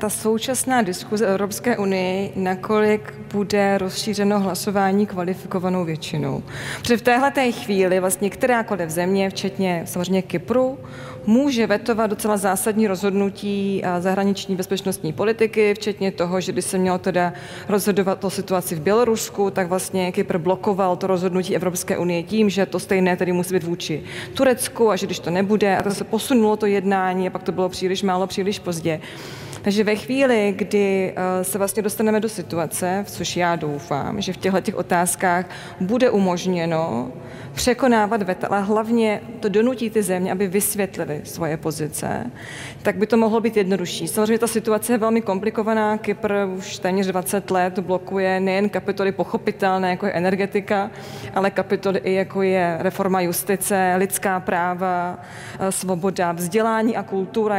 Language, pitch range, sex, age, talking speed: Czech, 185-210 Hz, female, 30-49, 150 wpm